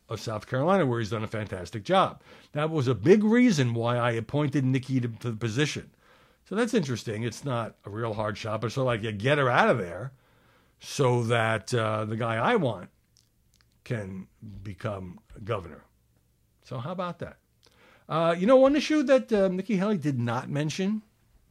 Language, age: English, 60-79